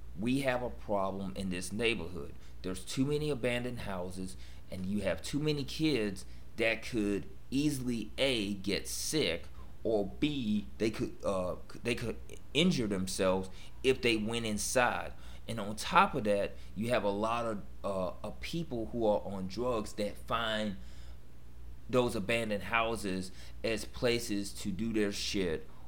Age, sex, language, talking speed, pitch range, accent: 30-49, male, English, 150 wpm, 90-120 Hz, American